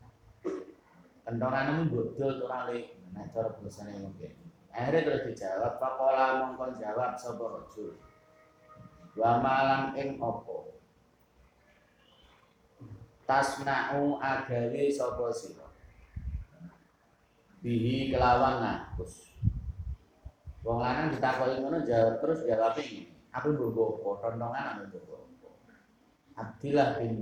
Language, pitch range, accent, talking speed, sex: Indonesian, 115-130 Hz, native, 70 wpm, male